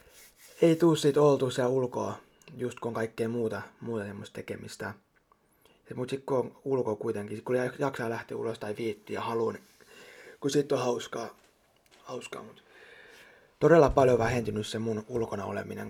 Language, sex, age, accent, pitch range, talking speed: Finnish, male, 30-49, native, 110-140 Hz, 155 wpm